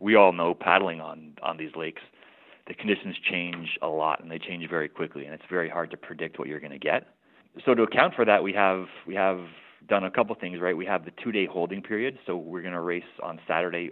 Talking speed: 240 wpm